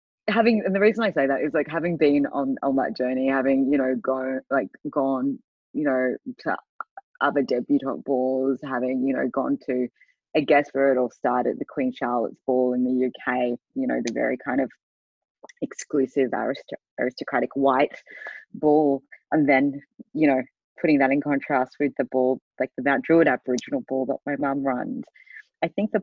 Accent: Australian